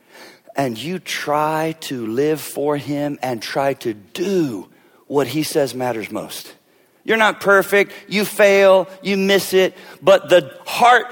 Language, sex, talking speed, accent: English, male, 145 wpm, American